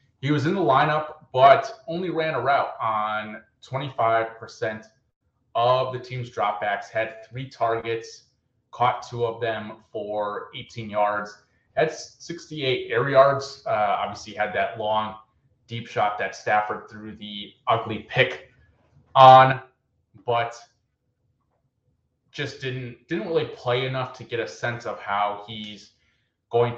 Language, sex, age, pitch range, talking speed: English, male, 30-49, 105-130 Hz, 130 wpm